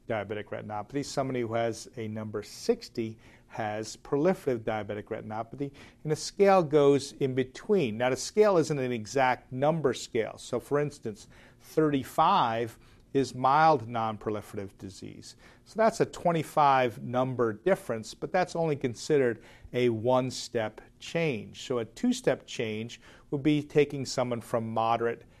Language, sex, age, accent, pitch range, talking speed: English, male, 50-69, American, 115-145 Hz, 135 wpm